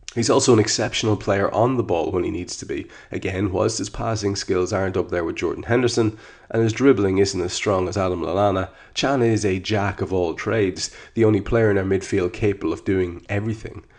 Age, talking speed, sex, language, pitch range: 30-49, 215 wpm, male, English, 95-115 Hz